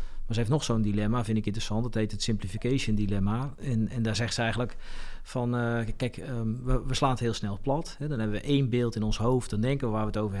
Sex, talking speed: male, 270 wpm